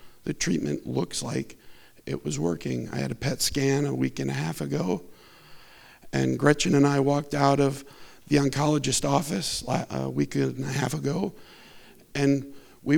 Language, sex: English, male